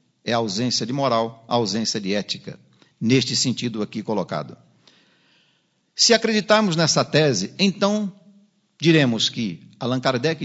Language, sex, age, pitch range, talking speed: Portuguese, male, 60-79, 120-160 Hz, 125 wpm